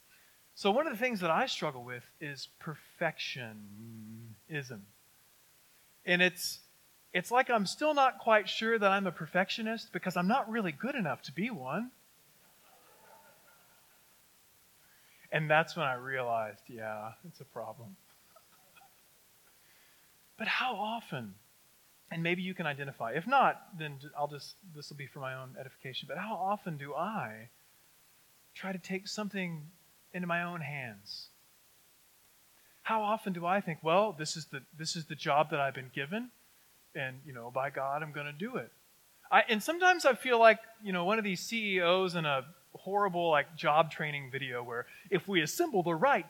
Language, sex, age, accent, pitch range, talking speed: English, male, 30-49, American, 145-220 Hz, 165 wpm